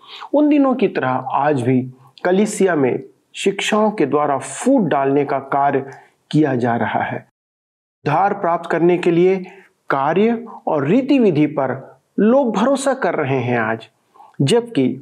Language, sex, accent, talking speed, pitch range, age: Hindi, male, native, 140 wpm, 135-210 Hz, 40-59